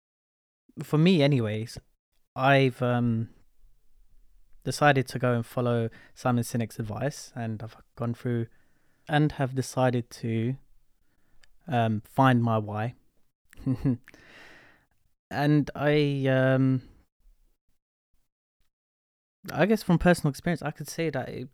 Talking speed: 105 wpm